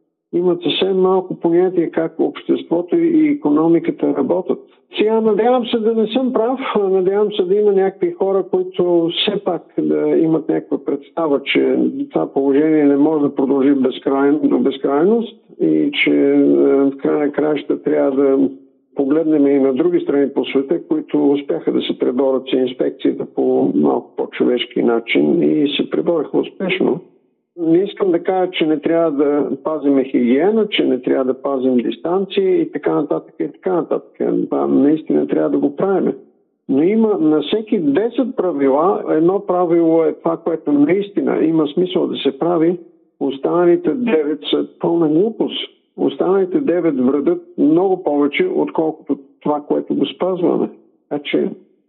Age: 50-69